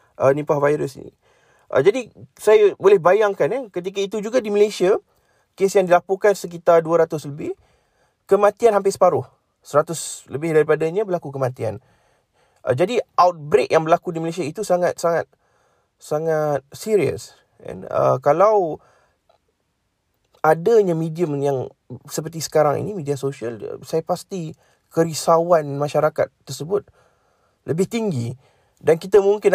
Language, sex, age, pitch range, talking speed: Malay, male, 30-49, 135-180 Hz, 125 wpm